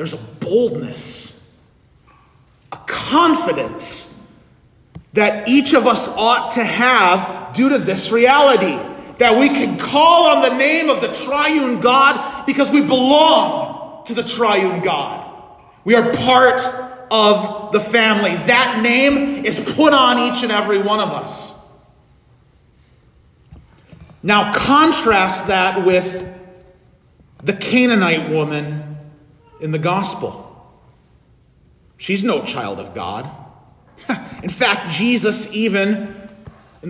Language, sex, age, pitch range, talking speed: English, male, 40-59, 210-285 Hz, 115 wpm